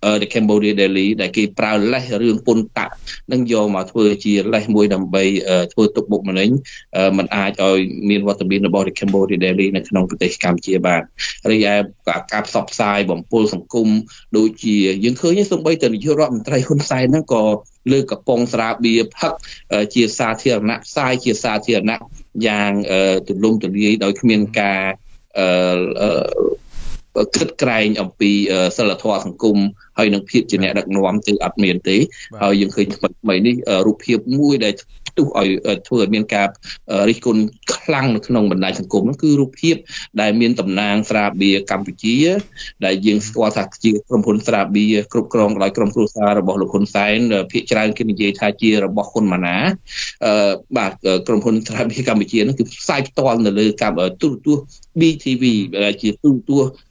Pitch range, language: 100-115 Hz, English